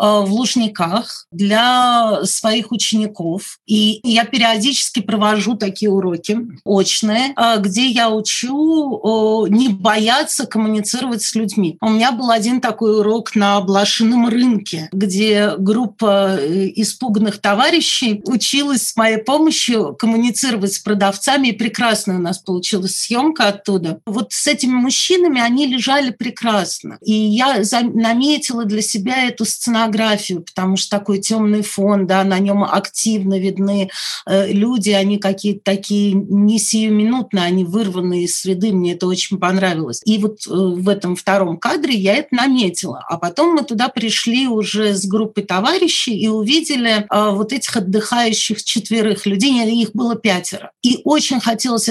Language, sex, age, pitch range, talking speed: Russian, female, 40-59, 200-235 Hz, 135 wpm